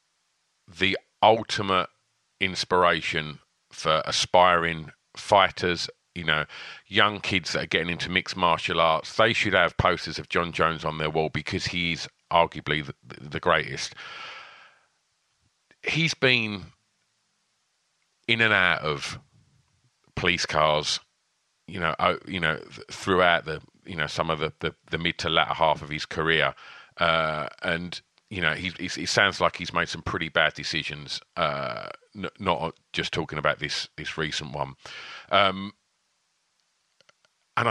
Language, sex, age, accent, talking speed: English, male, 40-59, British, 135 wpm